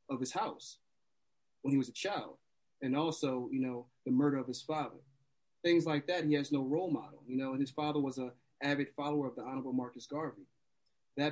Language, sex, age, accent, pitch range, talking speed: English, male, 30-49, American, 125-150 Hz, 210 wpm